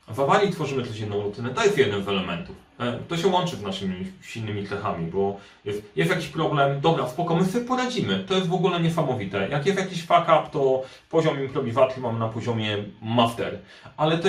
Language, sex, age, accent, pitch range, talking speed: Polish, male, 40-59, native, 110-170 Hz, 185 wpm